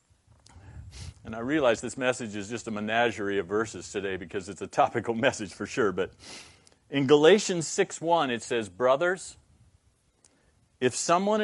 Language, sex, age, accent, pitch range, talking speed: English, male, 50-69, American, 110-155 Hz, 145 wpm